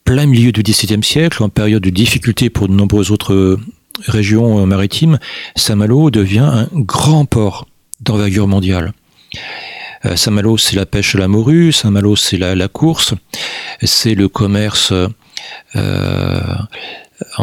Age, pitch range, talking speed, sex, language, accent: 40-59, 100-125 Hz, 130 wpm, male, French, French